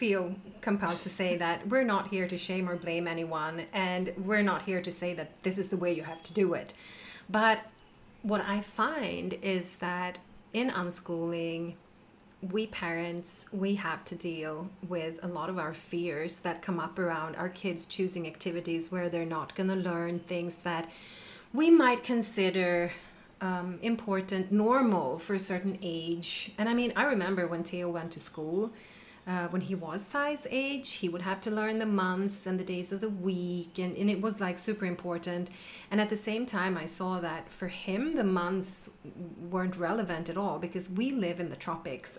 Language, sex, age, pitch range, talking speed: English, female, 30-49, 175-205 Hz, 190 wpm